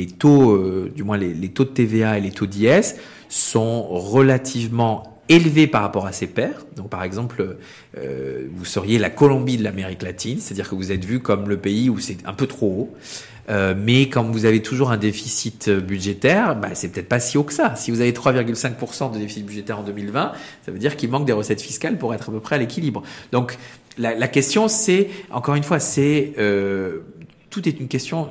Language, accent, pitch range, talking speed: French, French, 100-130 Hz, 215 wpm